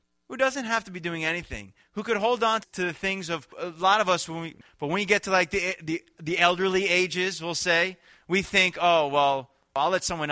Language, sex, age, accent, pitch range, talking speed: English, male, 20-39, American, 125-185 Hz, 240 wpm